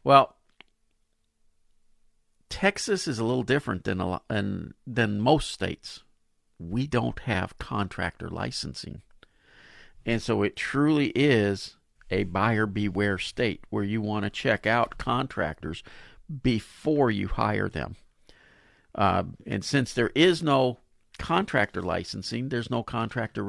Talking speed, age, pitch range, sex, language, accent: 125 wpm, 50-69, 95-125 Hz, male, English, American